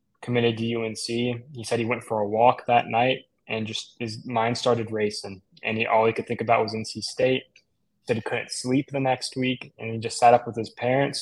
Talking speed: 235 wpm